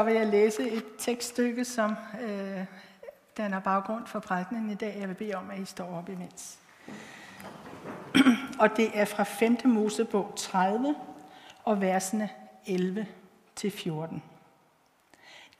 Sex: female